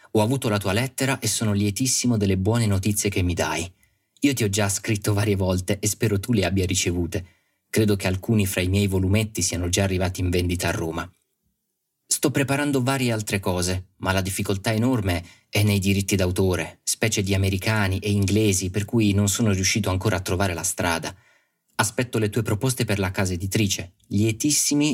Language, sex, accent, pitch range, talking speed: Italian, male, native, 95-110 Hz, 190 wpm